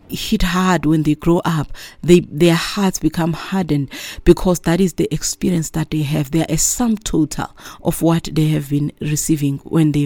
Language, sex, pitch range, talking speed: English, female, 155-175 Hz, 185 wpm